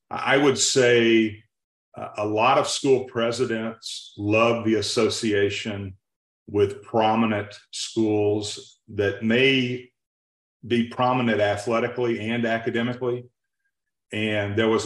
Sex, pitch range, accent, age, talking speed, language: male, 100-120 Hz, American, 40-59, 95 wpm, English